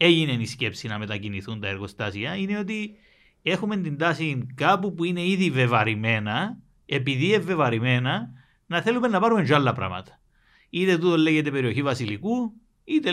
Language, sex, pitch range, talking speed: Greek, male, 120-175 Hz, 140 wpm